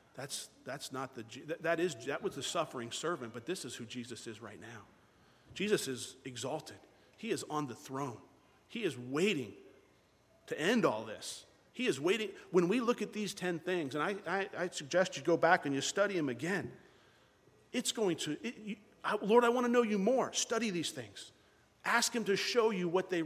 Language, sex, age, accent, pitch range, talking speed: English, male, 40-59, American, 150-245 Hz, 200 wpm